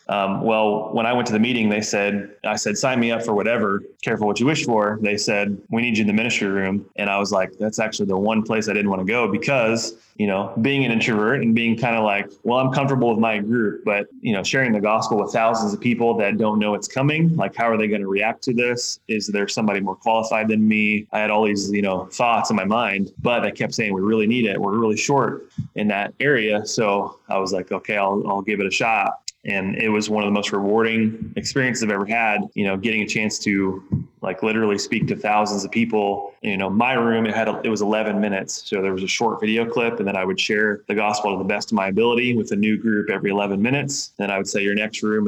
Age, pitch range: 20-39, 100-115 Hz